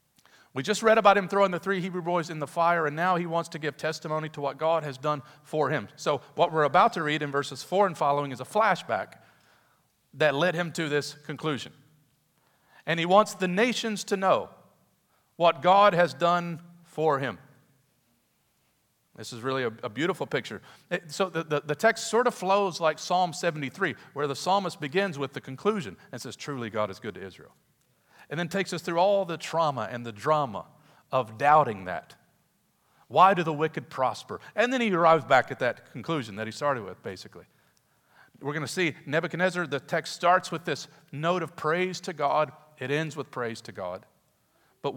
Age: 40-59